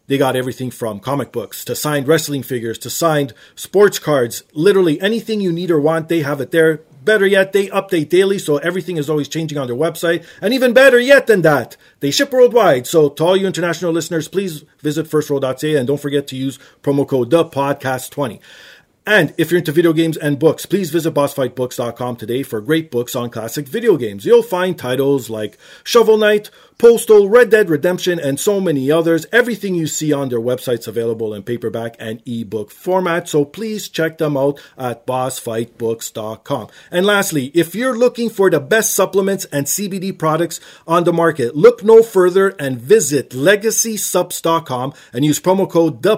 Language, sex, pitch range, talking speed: English, male, 140-190 Hz, 185 wpm